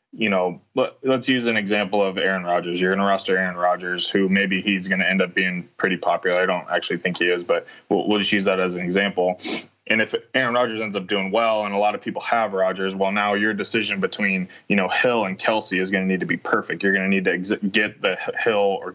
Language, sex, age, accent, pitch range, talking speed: English, male, 20-39, American, 90-100 Hz, 255 wpm